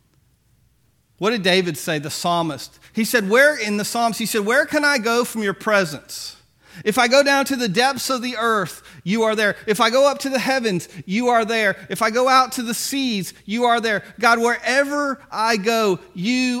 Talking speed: 215 wpm